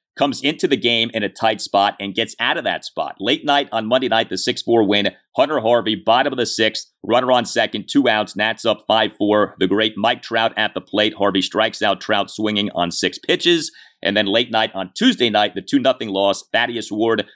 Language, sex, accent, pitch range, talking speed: English, male, American, 95-115 Hz, 230 wpm